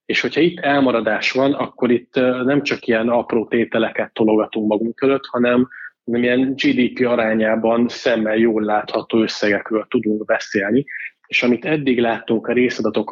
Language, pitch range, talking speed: Hungarian, 110-125 Hz, 140 wpm